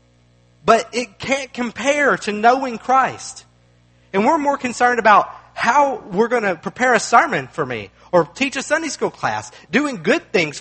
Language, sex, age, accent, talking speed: English, male, 40-59, American, 170 wpm